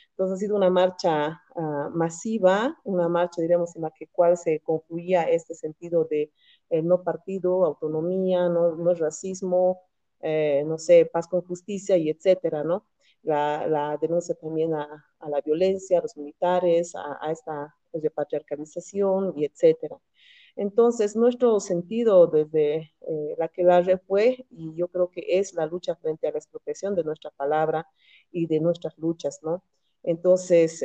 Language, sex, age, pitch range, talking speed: Spanish, female, 40-59, 160-190 Hz, 165 wpm